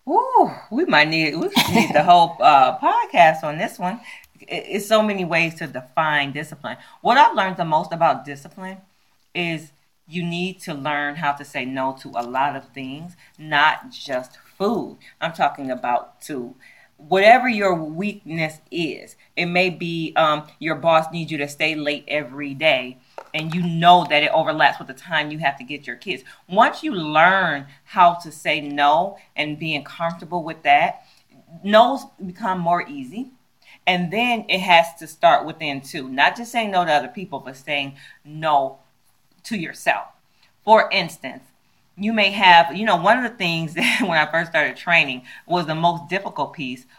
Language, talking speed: English, 175 wpm